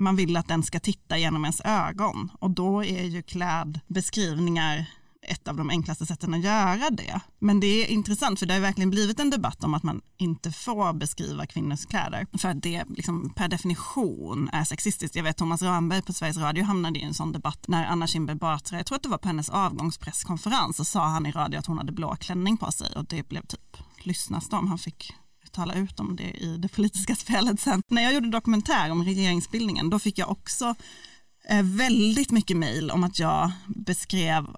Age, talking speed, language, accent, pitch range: 30-49, 205 wpm, Swedish, native, 165-205 Hz